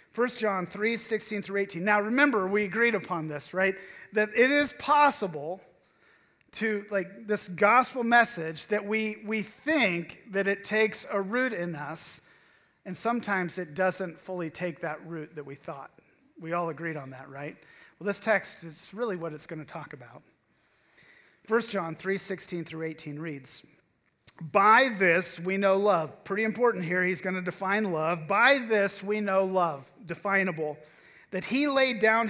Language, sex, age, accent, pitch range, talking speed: English, male, 40-59, American, 170-215 Hz, 165 wpm